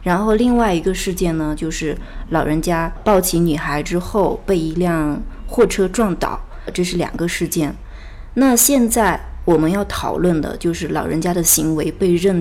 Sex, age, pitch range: female, 20-39, 160-195 Hz